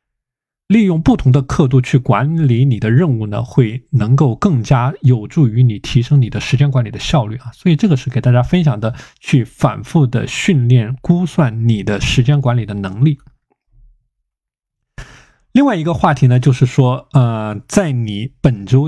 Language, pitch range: Chinese, 125-155 Hz